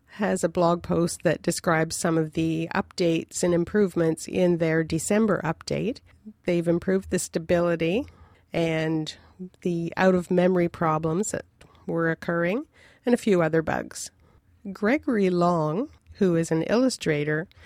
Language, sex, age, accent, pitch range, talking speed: English, female, 40-59, American, 155-185 Hz, 130 wpm